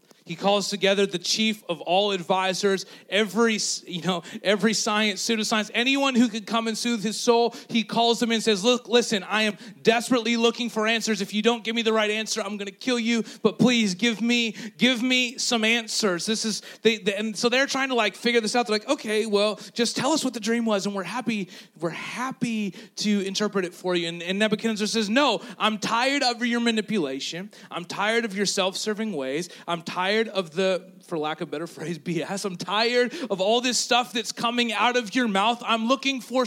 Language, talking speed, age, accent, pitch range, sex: English, 215 wpm, 30-49, American, 190-230 Hz, male